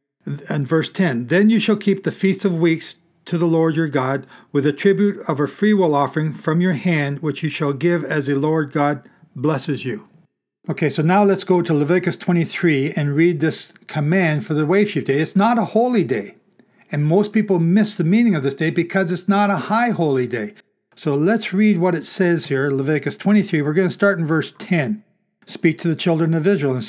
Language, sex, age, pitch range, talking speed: English, male, 60-79, 155-195 Hz, 215 wpm